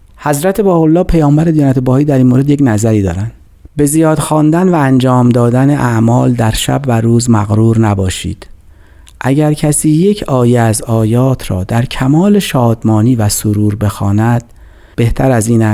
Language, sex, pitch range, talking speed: Persian, male, 105-140 Hz, 155 wpm